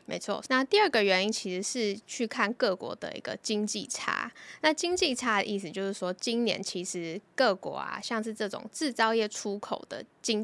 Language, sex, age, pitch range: Chinese, female, 10-29, 195-245 Hz